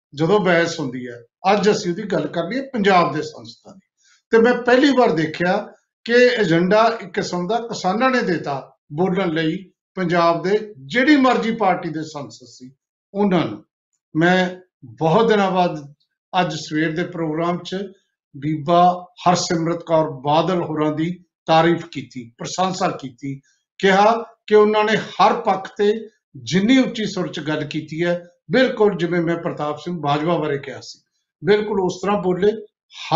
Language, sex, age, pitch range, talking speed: Punjabi, male, 50-69, 165-215 Hz, 135 wpm